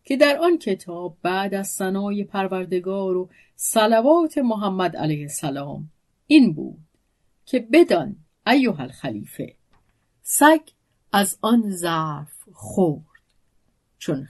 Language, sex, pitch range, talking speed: Persian, female, 165-230 Hz, 105 wpm